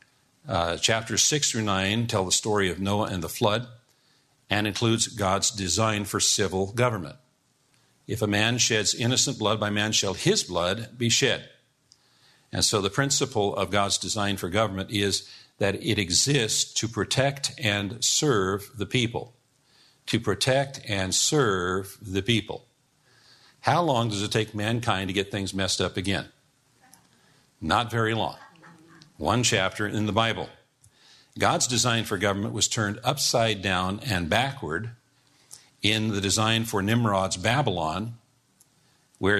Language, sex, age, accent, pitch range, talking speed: English, male, 50-69, American, 100-125 Hz, 145 wpm